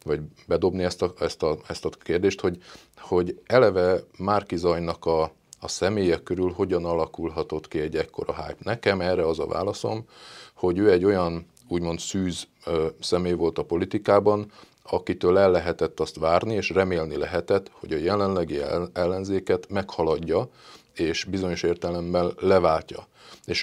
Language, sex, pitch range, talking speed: Hungarian, male, 85-100 Hz, 145 wpm